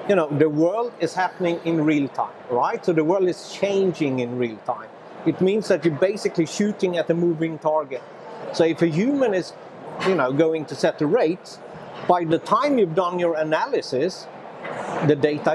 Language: English